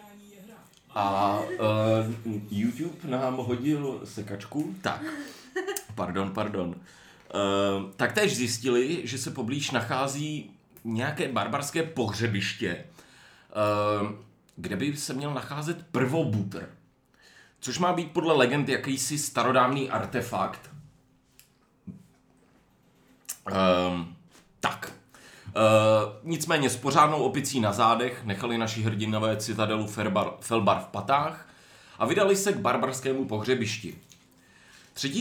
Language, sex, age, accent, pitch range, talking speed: Czech, male, 40-59, native, 105-155 Hz, 100 wpm